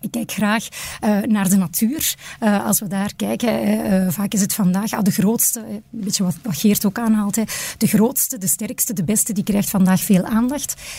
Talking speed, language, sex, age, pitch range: 200 wpm, Dutch, female, 30-49, 195-230 Hz